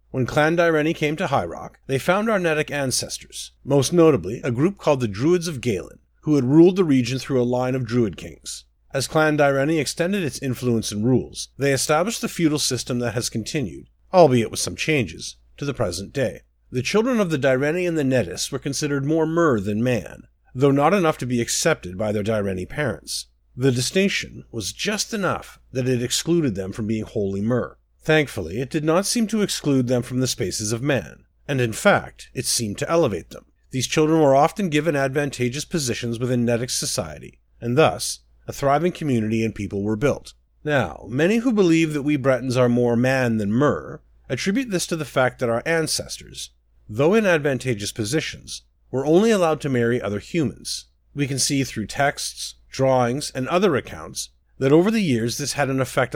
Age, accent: 50-69, American